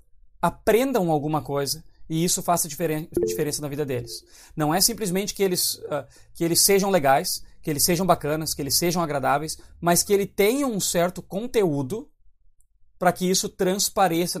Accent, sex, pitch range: Brazilian, male, 140-185 Hz